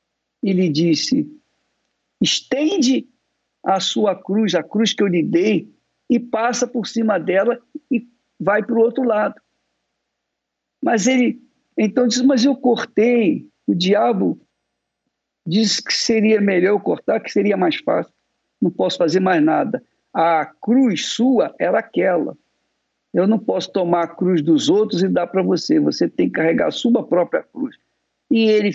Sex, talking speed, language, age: male, 155 wpm, Portuguese, 60-79